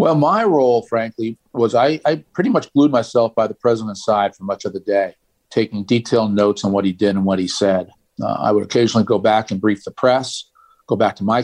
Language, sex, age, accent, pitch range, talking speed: English, male, 50-69, American, 105-130 Hz, 235 wpm